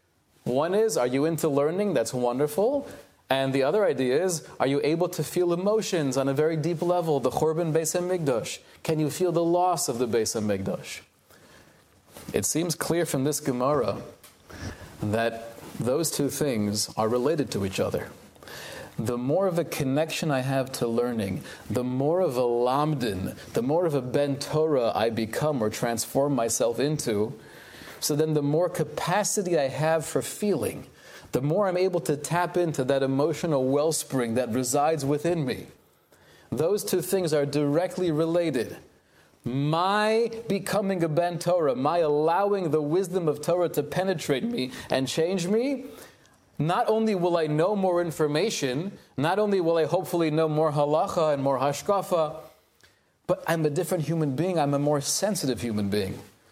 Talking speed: 165 wpm